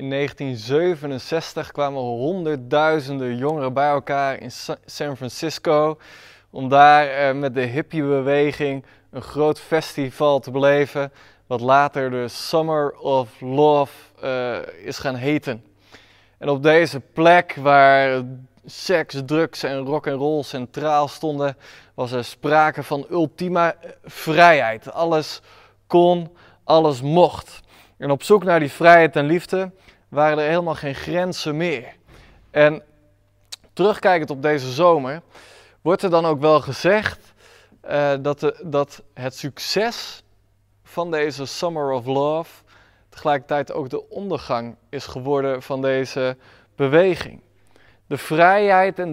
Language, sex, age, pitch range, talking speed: Dutch, male, 20-39, 130-155 Hz, 120 wpm